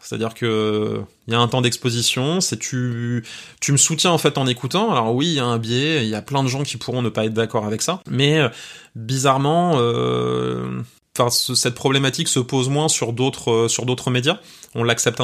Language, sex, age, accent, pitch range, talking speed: French, male, 20-39, French, 115-140 Hz, 230 wpm